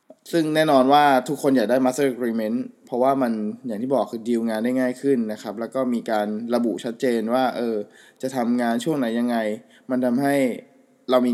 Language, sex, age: Thai, male, 20-39